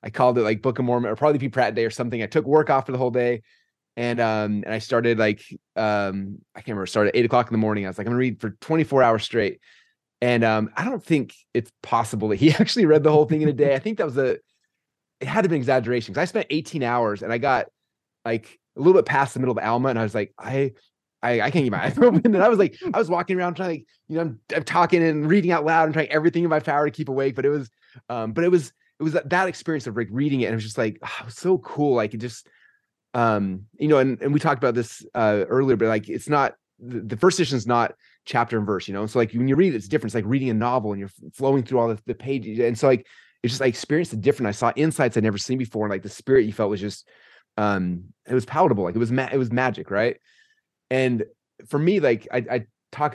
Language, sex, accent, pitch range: English, male, American, 110-150 Hz